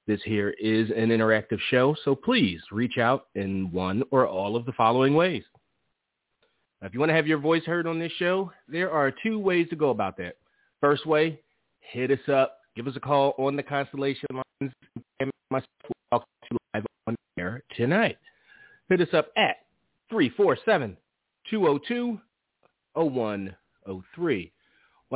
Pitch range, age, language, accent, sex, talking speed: 110-150 Hz, 30-49, English, American, male, 155 wpm